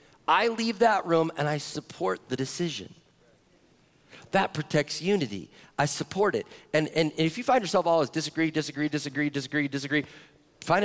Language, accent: English, American